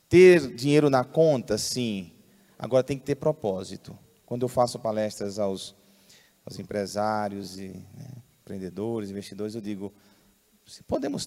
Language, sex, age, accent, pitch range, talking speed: Portuguese, male, 30-49, Brazilian, 120-170 Hz, 130 wpm